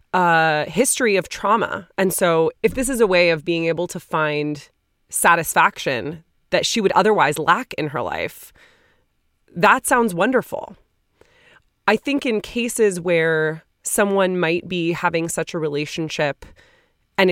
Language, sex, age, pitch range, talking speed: English, female, 20-39, 155-200 Hz, 140 wpm